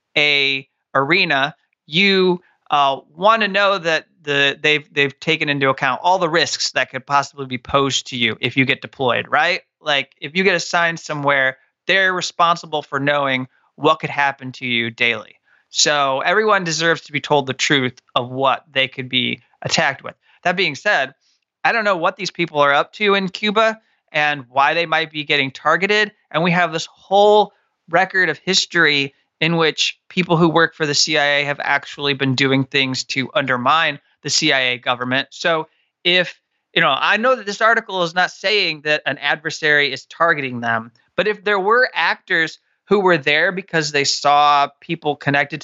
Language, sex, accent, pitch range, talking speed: English, male, American, 135-180 Hz, 180 wpm